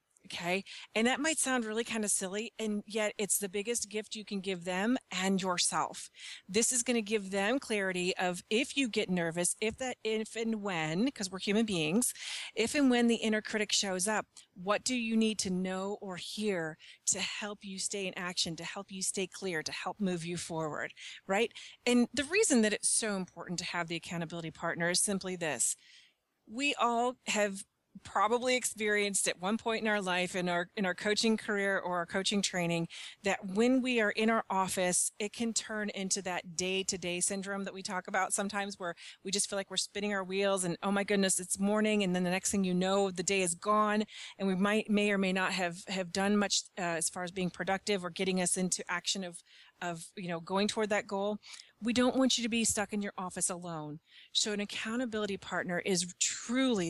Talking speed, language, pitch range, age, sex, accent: 215 wpm, English, 185-220 Hz, 30-49, female, American